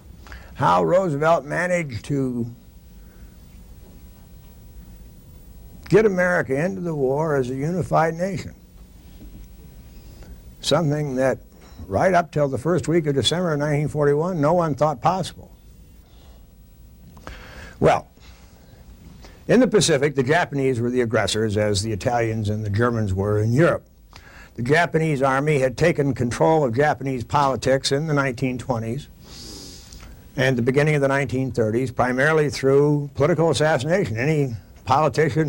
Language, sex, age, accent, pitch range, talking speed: English, male, 60-79, American, 110-155 Hz, 120 wpm